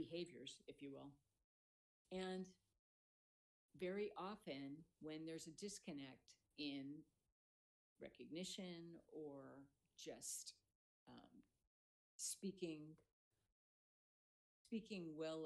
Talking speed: 75 wpm